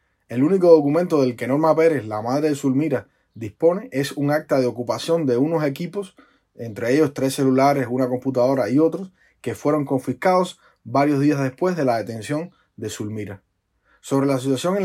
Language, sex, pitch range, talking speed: Spanish, male, 125-155 Hz, 175 wpm